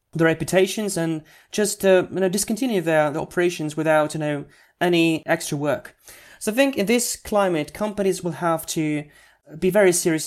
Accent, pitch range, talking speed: British, 150-175 Hz, 175 wpm